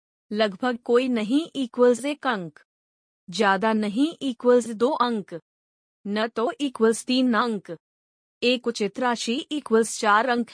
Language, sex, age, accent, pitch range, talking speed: Hindi, female, 30-49, native, 205-250 Hz, 125 wpm